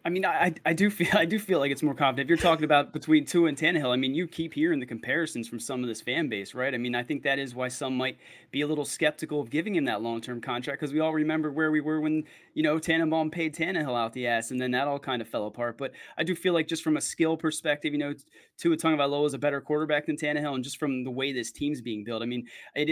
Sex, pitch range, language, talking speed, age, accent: male, 130-160 Hz, English, 290 wpm, 20-39, American